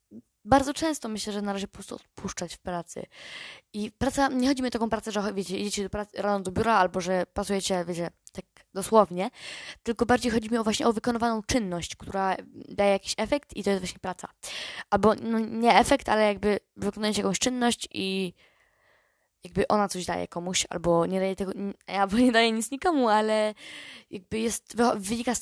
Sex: female